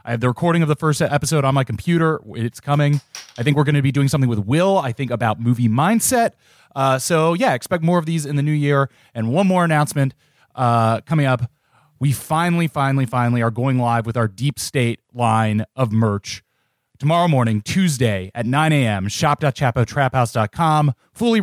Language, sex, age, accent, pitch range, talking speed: English, male, 30-49, American, 120-160 Hz, 190 wpm